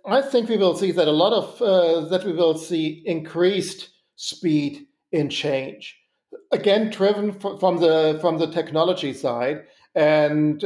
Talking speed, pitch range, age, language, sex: 160 wpm, 150-180 Hz, 50-69, English, male